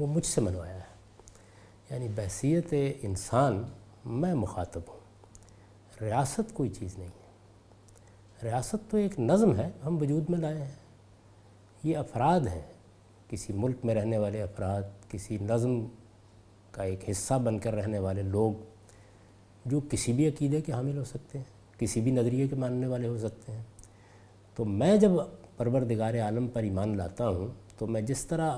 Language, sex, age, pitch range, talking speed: Urdu, male, 50-69, 100-130 Hz, 160 wpm